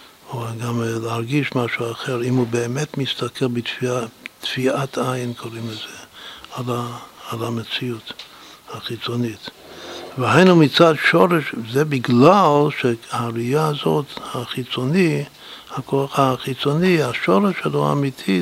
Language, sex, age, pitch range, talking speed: Hebrew, male, 60-79, 120-140 Hz, 100 wpm